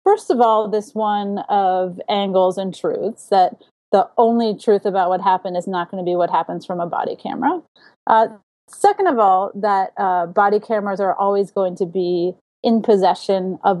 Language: English